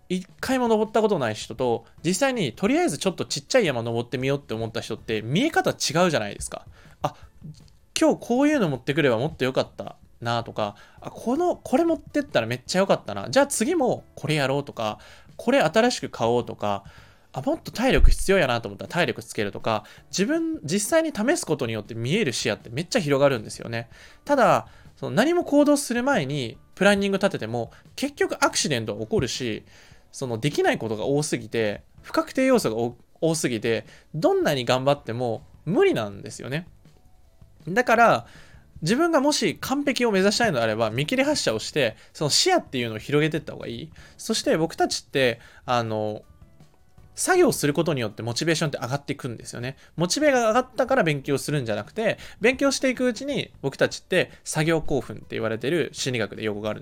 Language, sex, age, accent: Japanese, male, 20-39, native